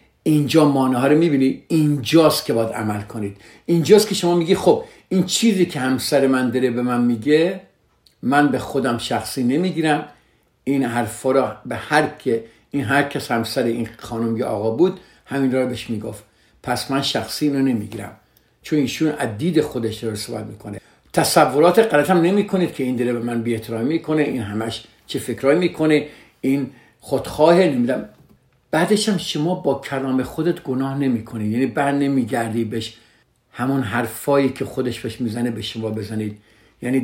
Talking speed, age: 150 wpm, 50-69